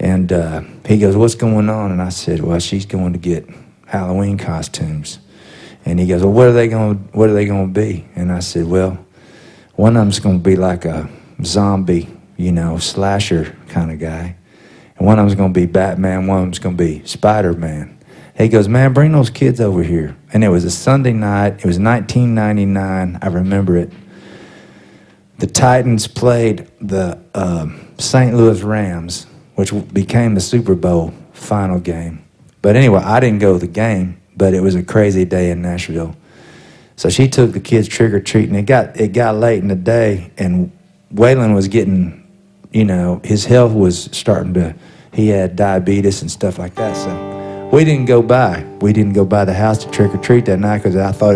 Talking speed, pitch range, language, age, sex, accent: 195 wpm, 90-110 Hz, English, 40-59, male, American